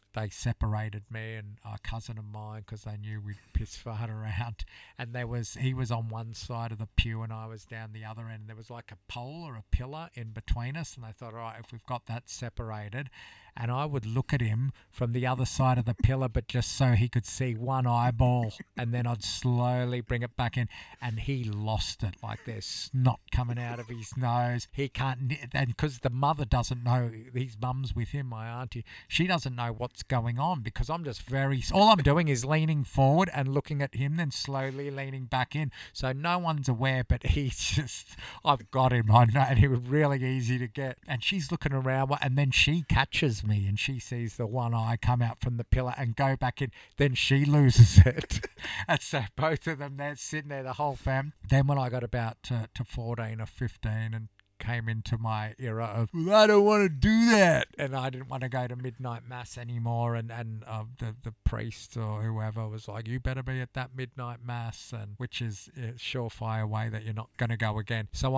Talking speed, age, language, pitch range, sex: 225 wpm, 50-69, English, 110-135 Hz, male